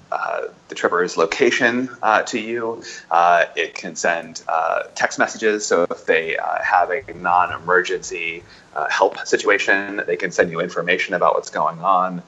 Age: 30-49